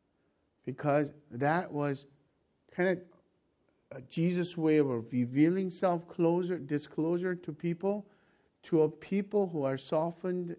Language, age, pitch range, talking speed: English, 50-69, 145-185 Hz, 120 wpm